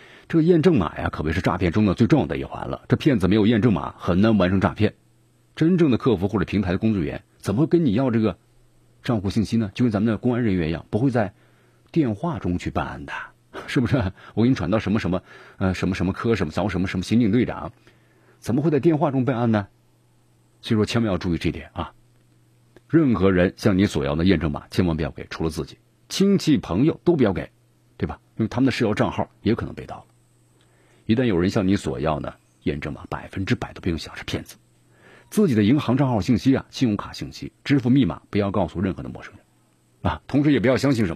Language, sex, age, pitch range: Chinese, male, 50-69, 90-120 Hz